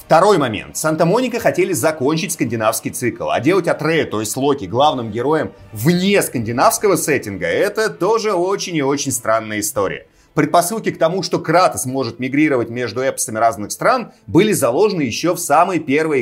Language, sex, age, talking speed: Russian, male, 30-49, 160 wpm